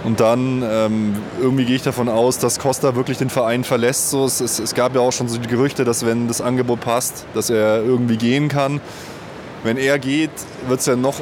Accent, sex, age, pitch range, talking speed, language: German, male, 20-39, 120-145 Hz, 220 wpm, German